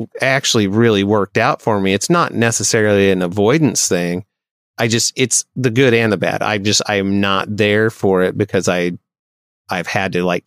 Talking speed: 190 wpm